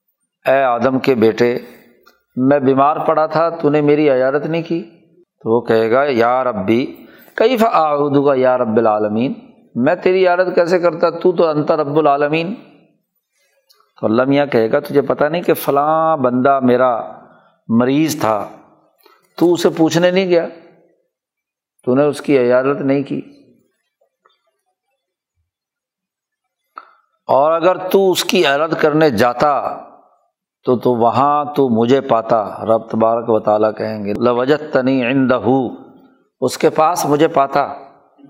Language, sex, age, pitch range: Urdu, male, 50-69, 125-185 Hz